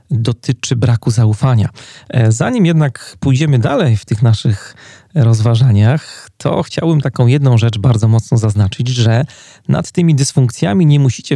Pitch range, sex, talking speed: 115-135 Hz, male, 130 wpm